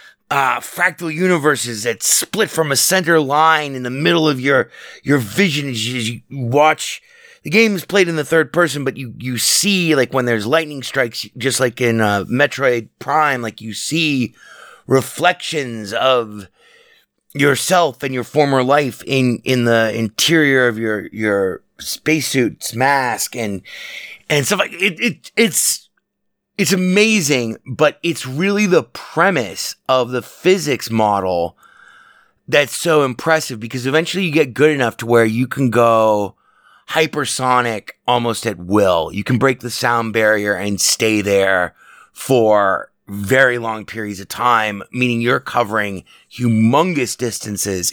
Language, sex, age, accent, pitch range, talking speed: English, male, 30-49, American, 115-155 Hz, 150 wpm